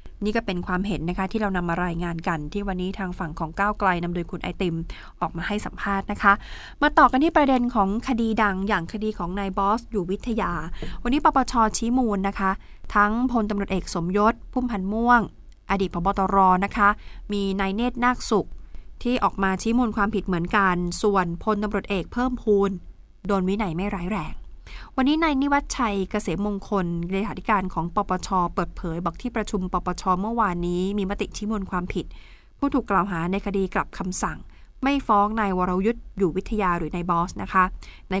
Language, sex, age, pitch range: Thai, female, 20-39, 185-215 Hz